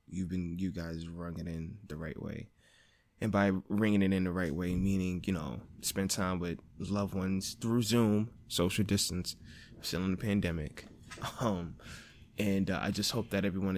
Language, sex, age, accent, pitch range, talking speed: English, male, 20-39, American, 90-105 Hz, 180 wpm